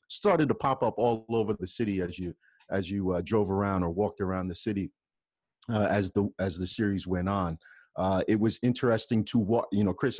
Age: 30-49